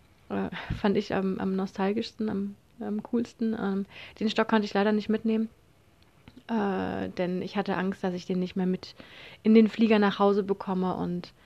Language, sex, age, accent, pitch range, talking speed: German, female, 30-49, German, 190-220 Hz, 170 wpm